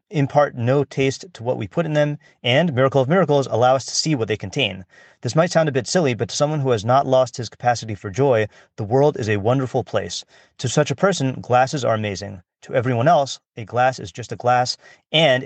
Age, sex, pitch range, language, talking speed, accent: 30-49, male, 115-140 Hz, English, 235 wpm, American